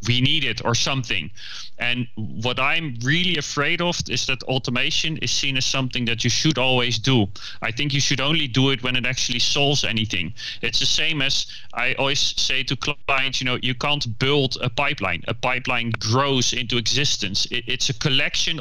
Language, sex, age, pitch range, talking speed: English, male, 30-49, 115-140 Hz, 190 wpm